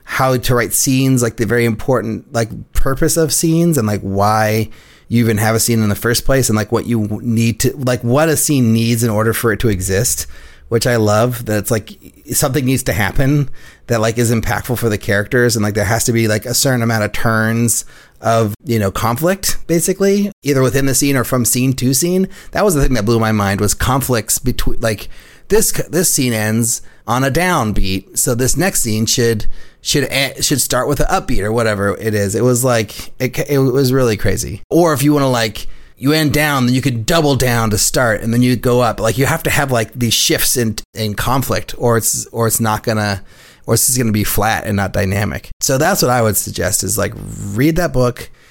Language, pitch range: English, 110-135 Hz